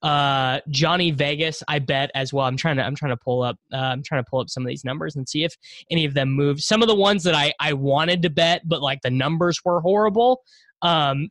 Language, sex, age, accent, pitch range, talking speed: English, male, 20-39, American, 140-190 Hz, 260 wpm